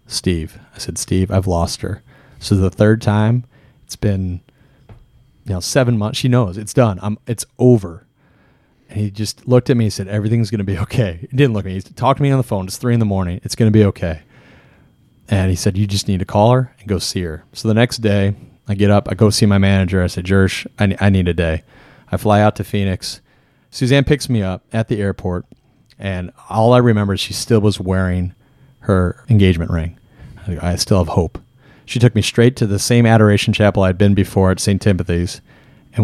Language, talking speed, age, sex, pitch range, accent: English, 220 wpm, 30-49, male, 95-125 Hz, American